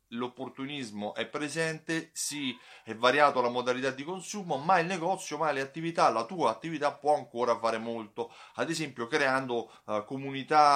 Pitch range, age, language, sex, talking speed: 115-155 Hz, 30-49, Italian, male, 150 wpm